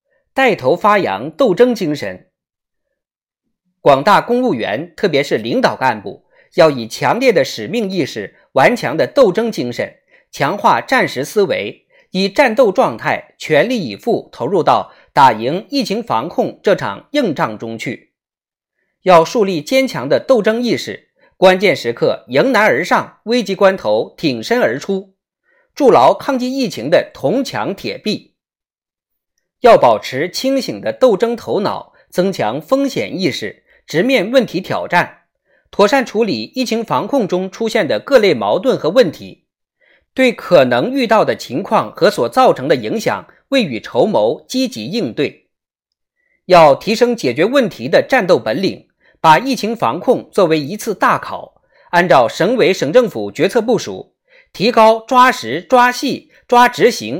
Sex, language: male, Chinese